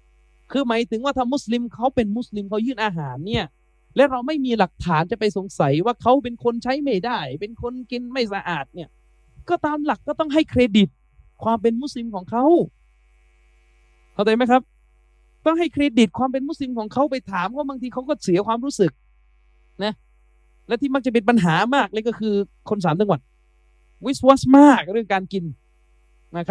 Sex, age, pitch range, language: male, 20-39, 180-275 Hz, Thai